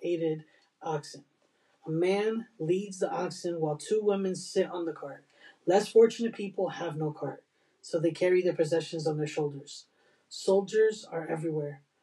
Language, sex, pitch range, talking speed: English, male, 155-195 Hz, 155 wpm